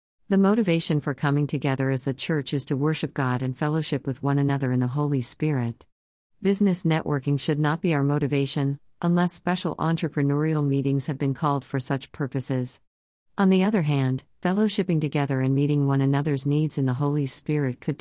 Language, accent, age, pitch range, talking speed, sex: English, American, 50-69, 130-155 Hz, 180 wpm, female